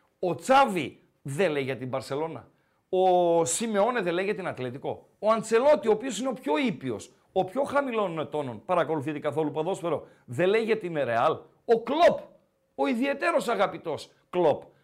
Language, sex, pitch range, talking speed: Greek, male, 150-210 Hz, 160 wpm